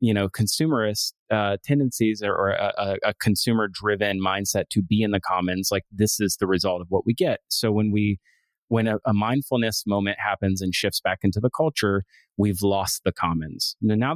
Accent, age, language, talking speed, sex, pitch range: American, 30-49, English, 195 wpm, male, 95-110 Hz